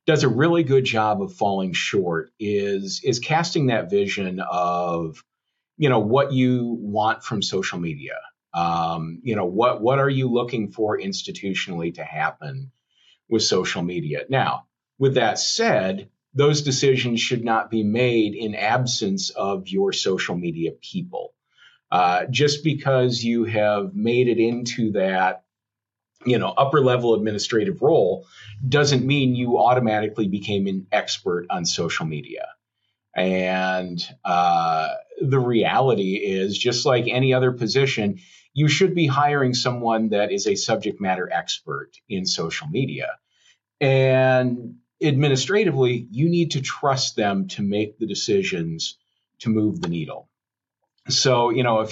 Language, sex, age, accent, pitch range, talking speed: English, male, 40-59, American, 100-135 Hz, 140 wpm